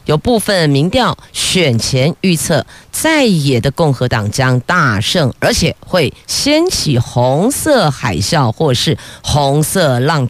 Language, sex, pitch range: Chinese, female, 125-165 Hz